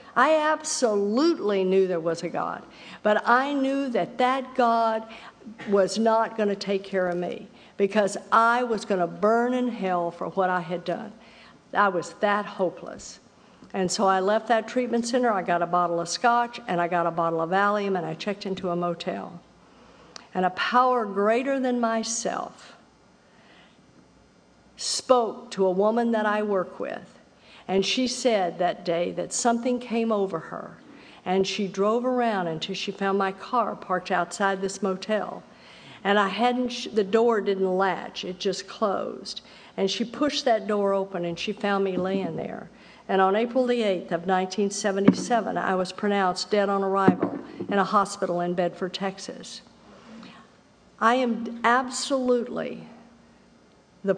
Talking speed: 160 wpm